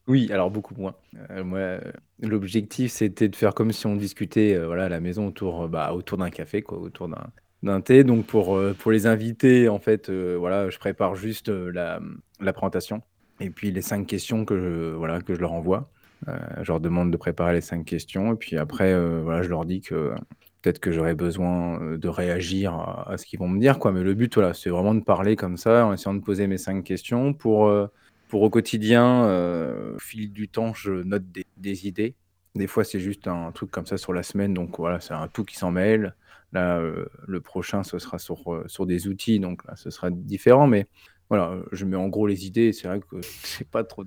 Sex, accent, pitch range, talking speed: male, French, 90-105 Hz, 235 wpm